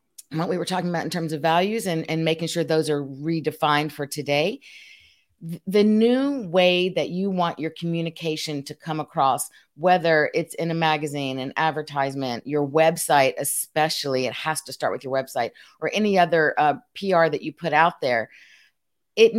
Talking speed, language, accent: 175 wpm, English, American